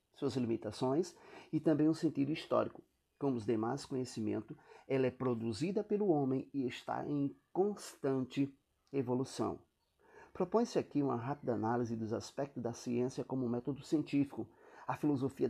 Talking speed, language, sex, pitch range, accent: 135 wpm, Portuguese, male, 125-175 Hz, Brazilian